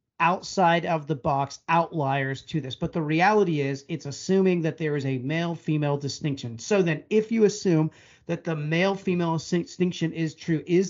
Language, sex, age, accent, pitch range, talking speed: English, male, 40-59, American, 155-190 Hz, 155 wpm